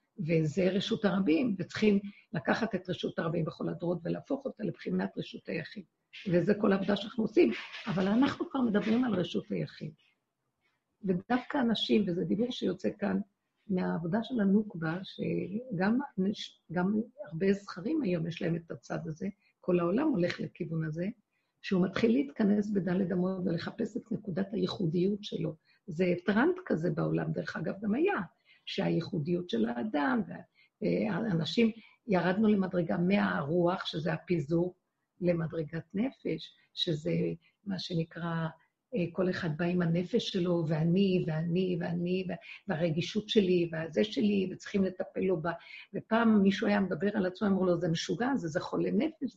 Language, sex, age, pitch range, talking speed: Hebrew, female, 50-69, 175-220 Hz, 135 wpm